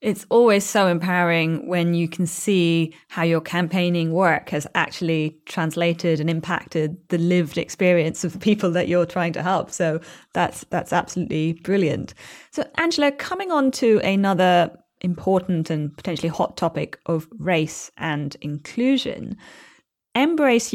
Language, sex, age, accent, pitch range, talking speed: English, female, 20-39, British, 160-195 Hz, 140 wpm